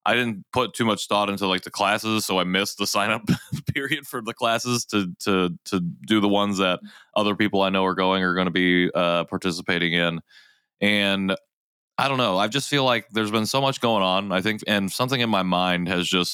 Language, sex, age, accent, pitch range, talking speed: English, male, 20-39, American, 90-105 Hz, 230 wpm